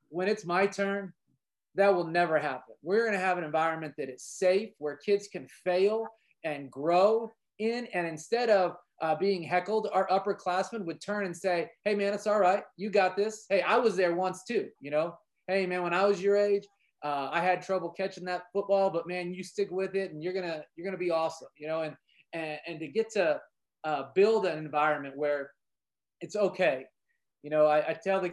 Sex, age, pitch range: male, 30-49, 160-200 Hz